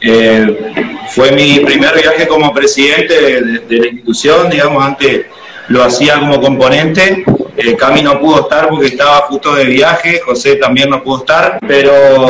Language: Spanish